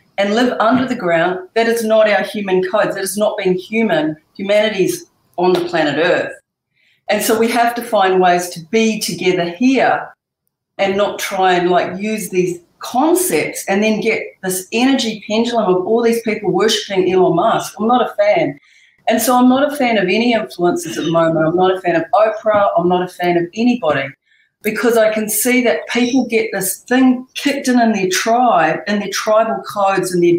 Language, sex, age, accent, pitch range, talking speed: English, female, 40-59, Australian, 180-225 Hz, 200 wpm